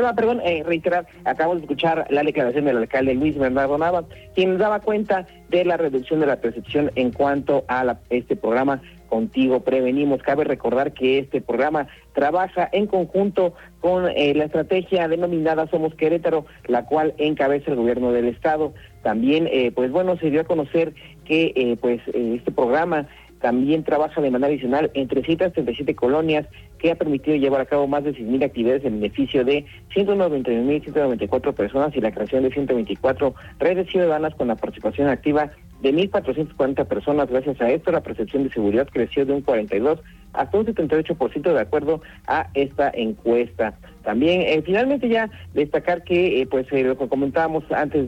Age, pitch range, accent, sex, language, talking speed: 40-59, 125-160 Hz, Mexican, male, Spanish, 170 wpm